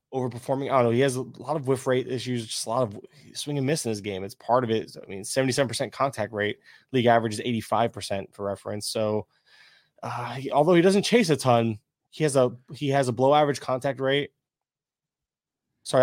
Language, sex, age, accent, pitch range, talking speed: English, male, 20-39, American, 110-140 Hz, 215 wpm